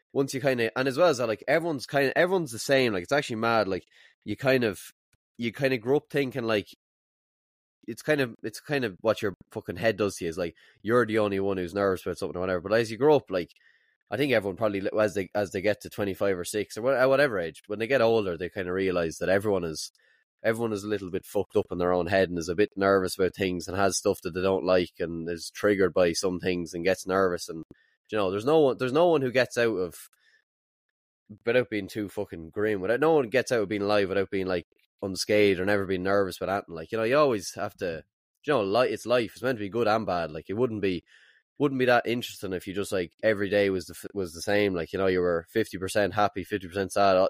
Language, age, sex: English, 20-39, male